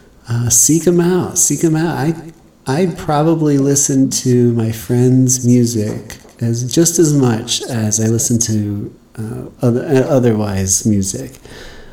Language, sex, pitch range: English, male, 115-140 Hz